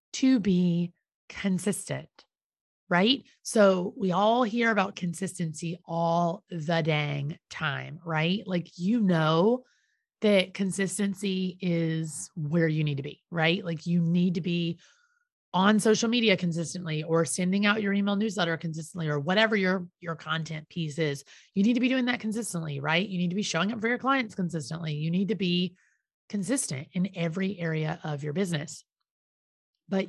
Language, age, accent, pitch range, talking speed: English, 30-49, American, 165-210 Hz, 160 wpm